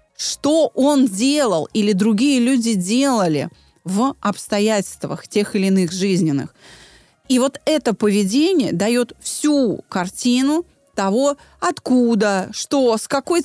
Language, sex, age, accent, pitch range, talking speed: Russian, female, 30-49, native, 180-255 Hz, 110 wpm